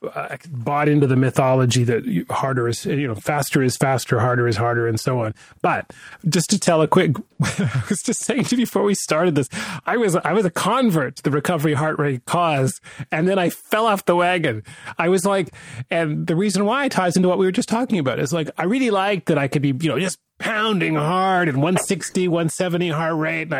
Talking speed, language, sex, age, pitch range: 225 wpm, English, male, 30-49, 140-185 Hz